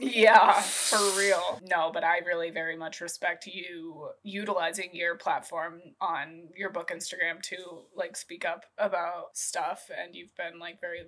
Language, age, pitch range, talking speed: English, 20-39, 180-205 Hz, 155 wpm